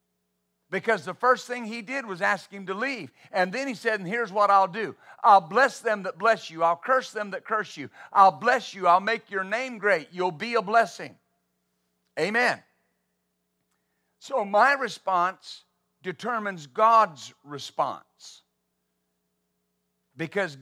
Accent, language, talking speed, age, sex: American, English, 155 wpm, 50-69, male